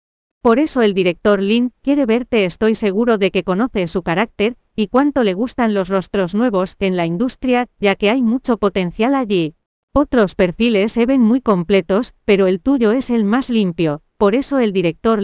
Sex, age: female, 40-59